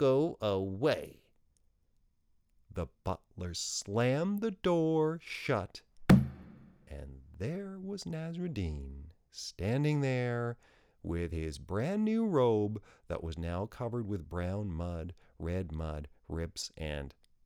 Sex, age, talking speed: male, 40-59, 105 wpm